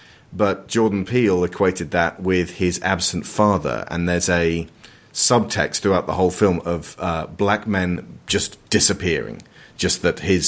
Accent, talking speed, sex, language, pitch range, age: British, 150 wpm, male, English, 90-105 Hz, 30-49